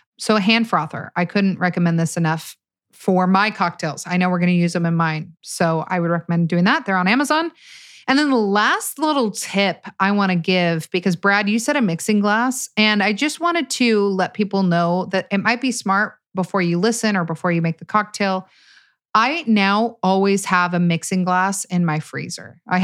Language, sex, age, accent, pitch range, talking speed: English, female, 30-49, American, 175-225 Hz, 210 wpm